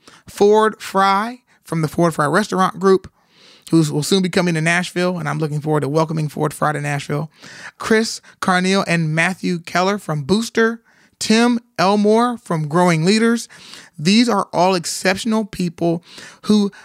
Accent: American